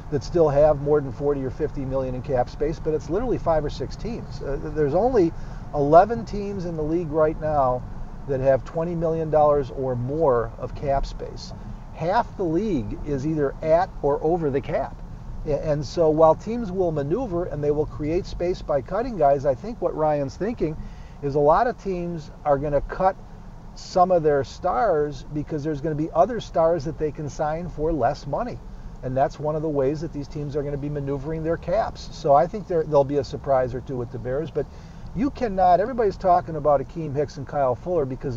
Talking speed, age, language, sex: 210 wpm, 50-69, English, male